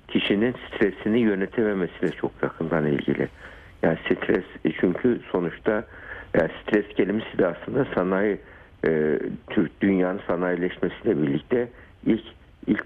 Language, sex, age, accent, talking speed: Turkish, male, 60-79, native, 105 wpm